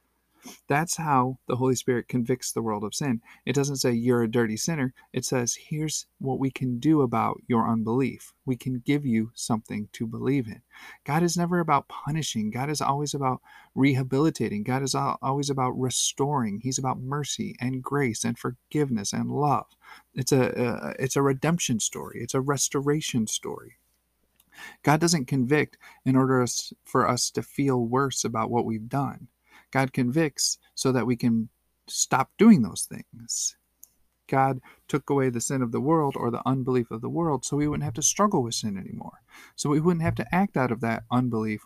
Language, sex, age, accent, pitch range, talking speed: English, male, 40-59, American, 120-145 Hz, 185 wpm